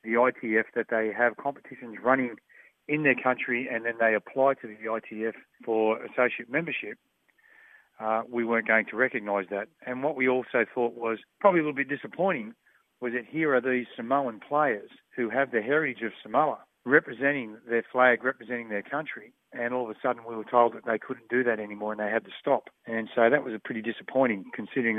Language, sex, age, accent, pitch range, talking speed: English, male, 40-59, Australian, 115-130 Hz, 200 wpm